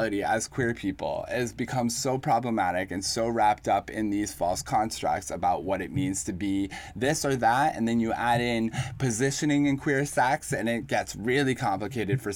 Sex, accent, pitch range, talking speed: male, American, 115-140 Hz, 190 wpm